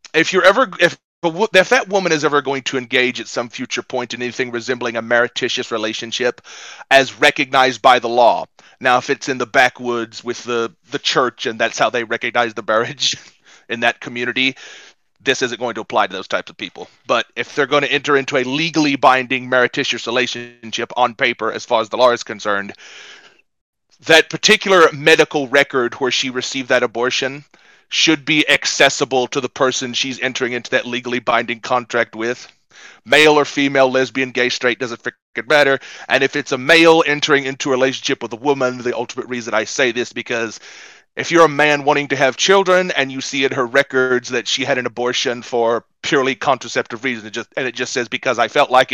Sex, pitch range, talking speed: male, 120-145 Hz, 200 wpm